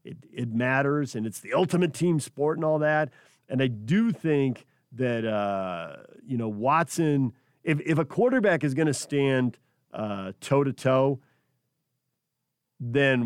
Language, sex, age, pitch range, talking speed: English, male, 40-59, 120-150 Hz, 145 wpm